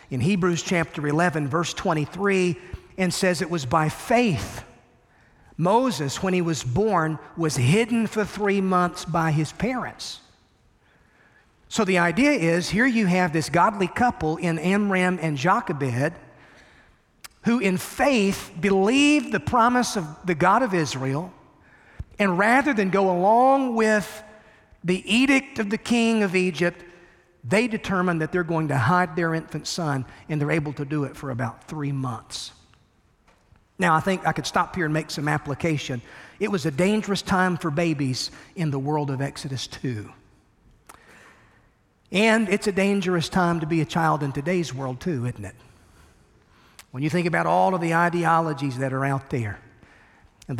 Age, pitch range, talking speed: 40-59, 145-195 Hz, 160 wpm